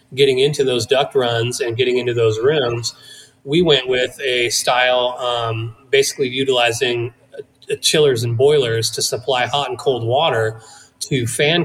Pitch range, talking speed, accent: 115-140 Hz, 155 wpm, American